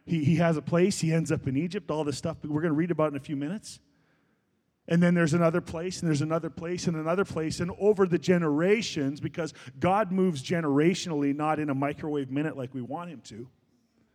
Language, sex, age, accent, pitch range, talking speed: English, male, 40-59, American, 135-175 Hz, 220 wpm